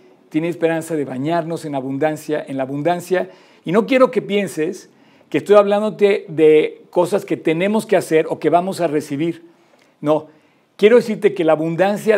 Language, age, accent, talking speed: Spanish, 50-69, Mexican, 170 wpm